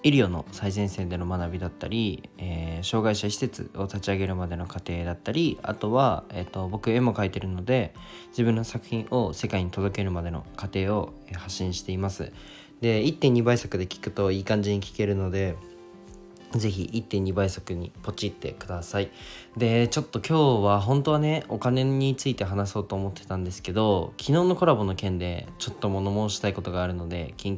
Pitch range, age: 90-115 Hz, 20-39